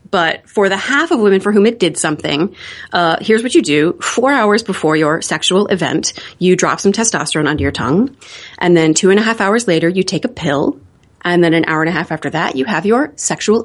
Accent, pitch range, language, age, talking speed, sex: American, 165-220 Hz, English, 30-49, 235 wpm, female